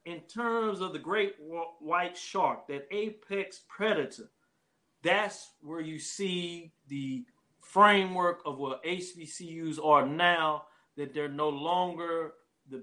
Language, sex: English, male